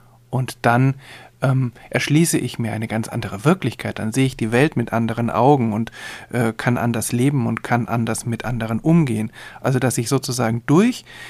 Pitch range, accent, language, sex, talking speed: 115-135 Hz, German, German, male, 180 wpm